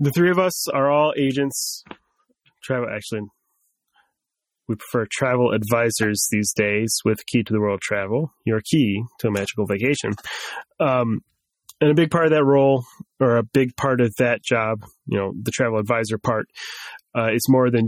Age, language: 20-39, English